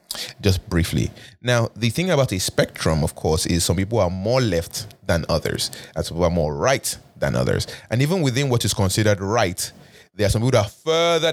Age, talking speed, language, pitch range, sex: 20-39, 210 wpm, English, 100-125 Hz, male